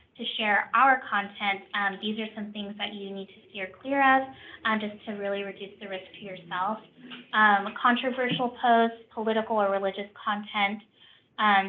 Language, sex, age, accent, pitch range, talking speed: English, female, 10-29, American, 200-235 Hz, 170 wpm